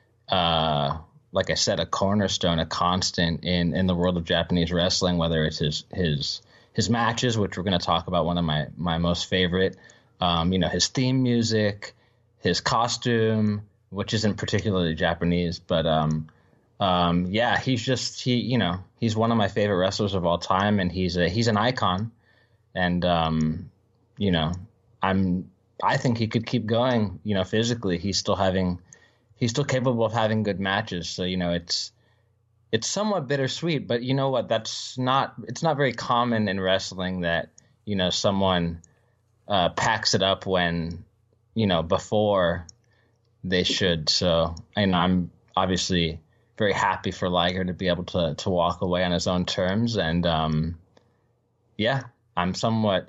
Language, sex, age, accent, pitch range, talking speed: English, male, 20-39, American, 90-115 Hz, 170 wpm